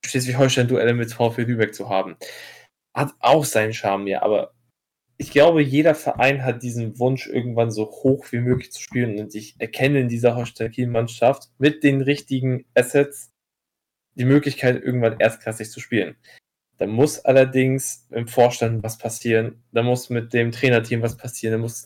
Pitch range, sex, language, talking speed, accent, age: 120-135 Hz, male, German, 165 wpm, German, 10-29